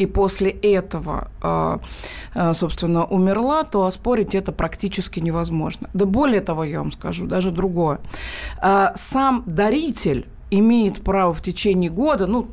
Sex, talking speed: female, 120 wpm